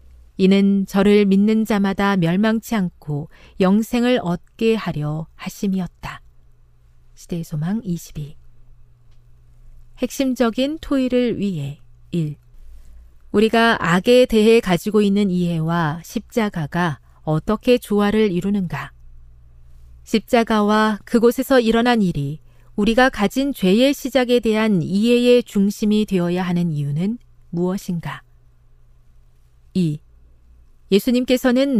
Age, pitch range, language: 40-59, 145-225 Hz, Korean